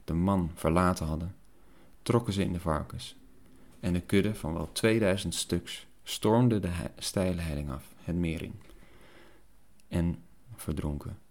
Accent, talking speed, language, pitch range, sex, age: Dutch, 140 wpm, Dutch, 85-100 Hz, male, 30-49